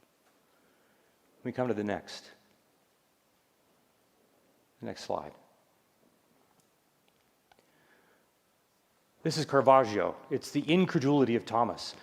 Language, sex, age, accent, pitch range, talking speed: English, male, 40-59, American, 125-160 Hz, 75 wpm